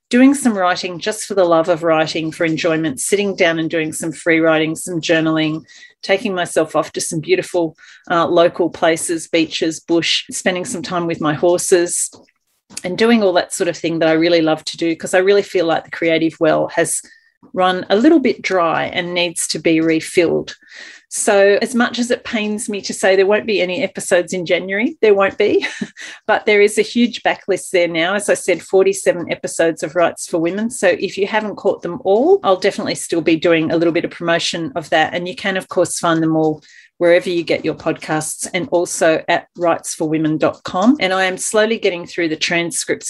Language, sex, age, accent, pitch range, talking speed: English, female, 40-59, Australian, 165-200 Hz, 205 wpm